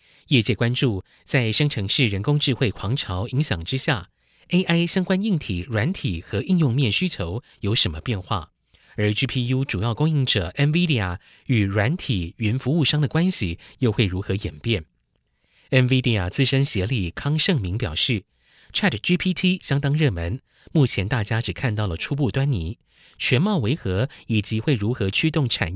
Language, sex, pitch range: Chinese, male, 100-140 Hz